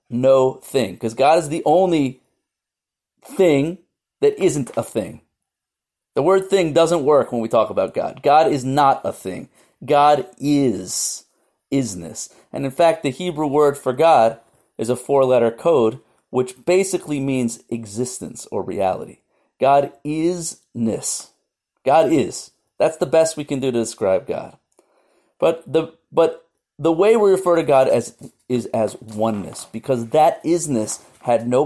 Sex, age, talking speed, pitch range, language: male, 40-59, 150 wpm, 125-165 Hz, English